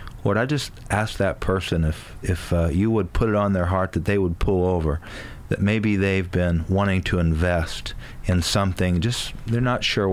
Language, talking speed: English, 200 wpm